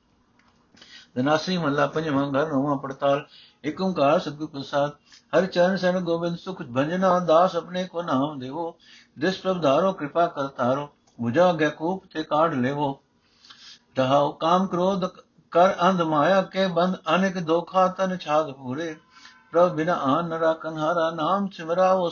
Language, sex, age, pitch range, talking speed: Punjabi, male, 60-79, 140-180 Hz, 135 wpm